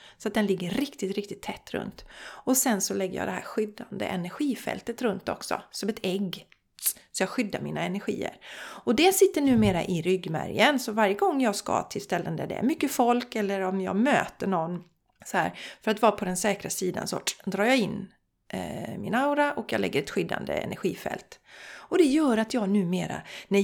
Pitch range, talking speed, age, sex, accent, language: 195-270 Hz, 200 wpm, 40-59, female, native, Swedish